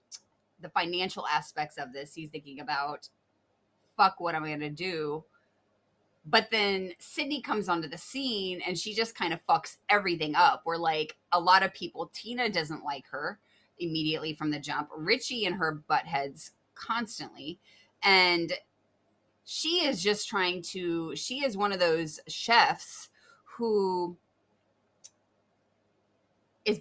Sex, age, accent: female, 20-39, American